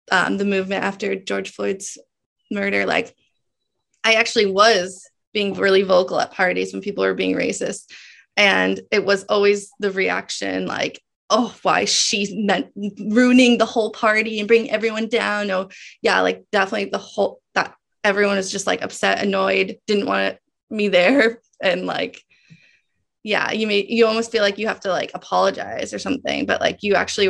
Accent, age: American, 20-39